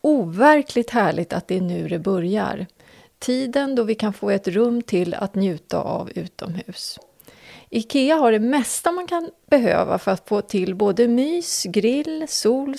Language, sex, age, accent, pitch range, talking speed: Swedish, female, 30-49, native, 185-260 Hz, 165 wpm